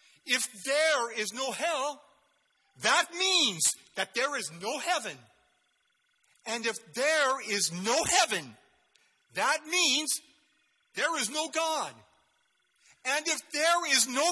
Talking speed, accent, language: 120 wpm, American, English